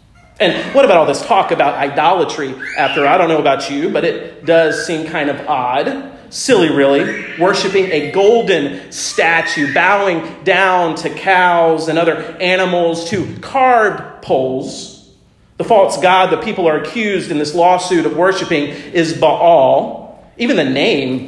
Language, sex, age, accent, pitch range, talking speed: English, male, 40-59, American, 170-230 Hz, 150 wpm